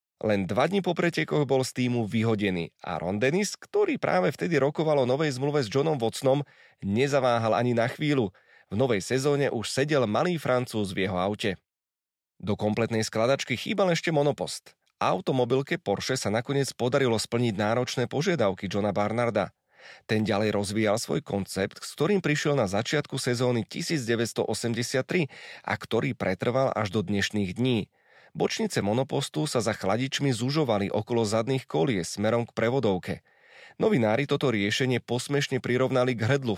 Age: 30-49